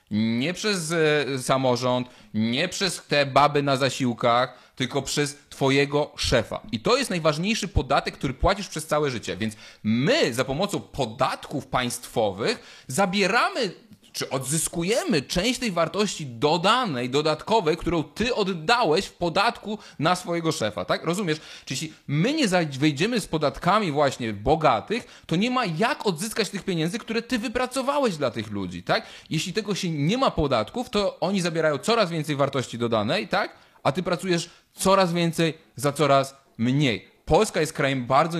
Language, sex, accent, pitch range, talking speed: Polish, male, native, 130-200 Hz, 150 wpm